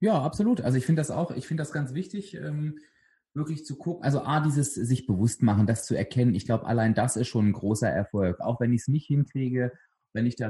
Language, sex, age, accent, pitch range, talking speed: German, male, 30-49, German, 120-150 Hz, 240 wpm